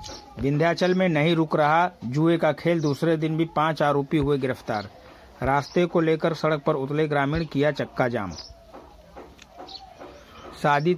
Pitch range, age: 140-170 Hz, 60-79